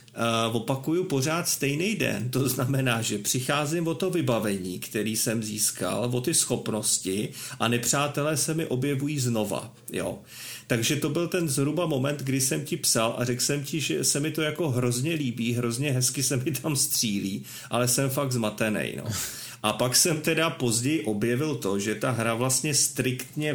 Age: 40-59